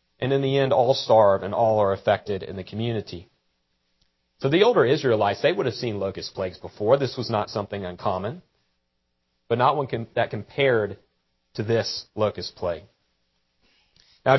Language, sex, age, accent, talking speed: English, male, 40-59, American, 165 wpm